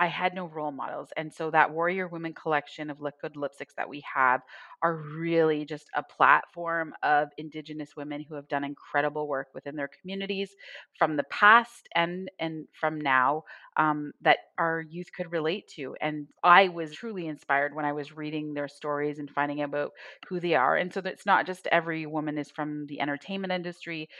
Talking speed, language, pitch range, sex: 190 wpm, English, 145-170 Hz, female